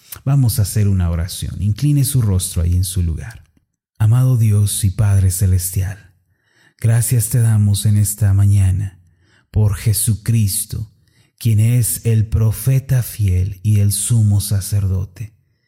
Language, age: Spanish, 30-49